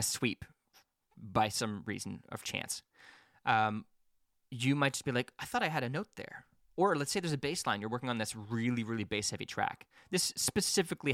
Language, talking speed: English, 195 wpm